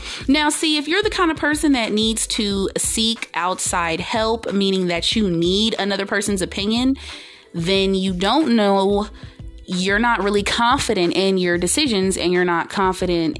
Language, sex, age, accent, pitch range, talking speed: English, female, 30-49, American, 170-215 Hz, 160 wpm